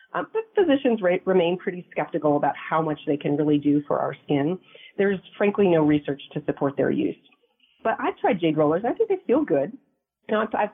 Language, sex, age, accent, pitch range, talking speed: English, female, 40-59, American, 150-190 Hz, 190 wpm